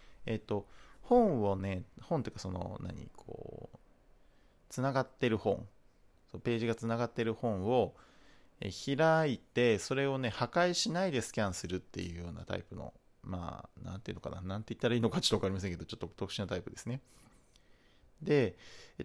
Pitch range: 95-125 Hz